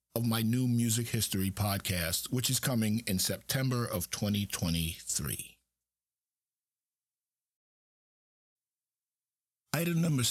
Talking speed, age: 85 wpm, 50-69